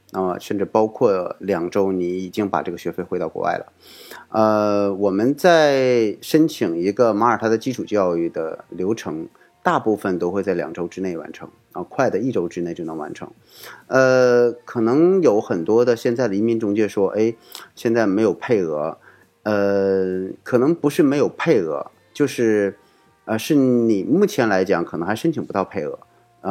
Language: Chinese